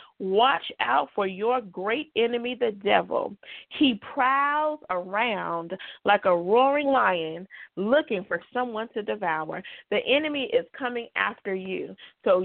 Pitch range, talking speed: 190-255 Hz, 130 wpm